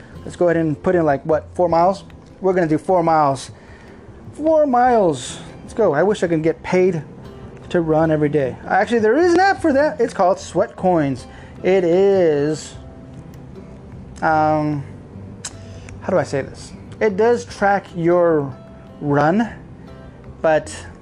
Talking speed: 155 wpm